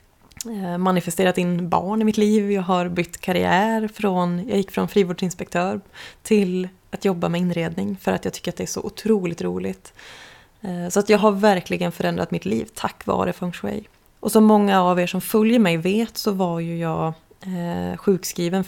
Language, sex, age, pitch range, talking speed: Swedish, female, 20-39, 175-200 Hz, 180 wpm